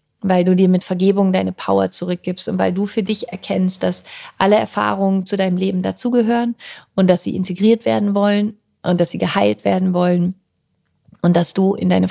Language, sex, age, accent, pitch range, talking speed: German, female, 30-49, German, 180-210 Hz, 190 wpm